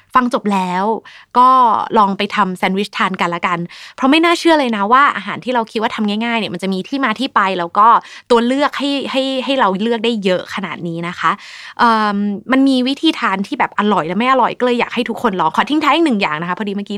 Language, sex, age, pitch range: Thai, female, 20-39, 185-240 Hz